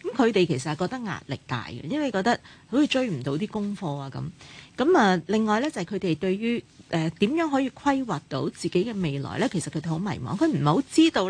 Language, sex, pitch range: Chinese, female, 155-215 Hz